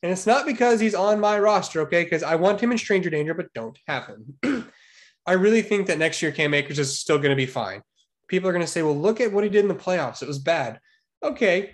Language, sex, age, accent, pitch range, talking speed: English, male, 20-39, American, 155-205 Hz, 265 wpm